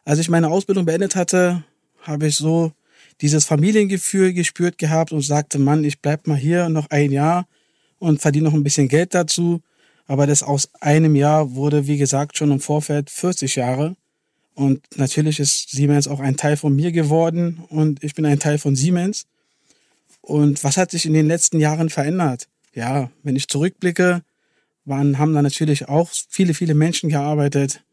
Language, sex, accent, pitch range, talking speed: German, male, German, 145-165 Hz, 175 wpm